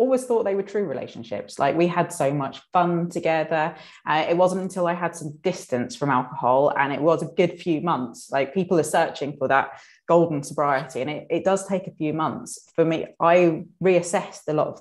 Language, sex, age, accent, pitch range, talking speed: English, female, 20-39, British, 145-175 Hz, 215 wpm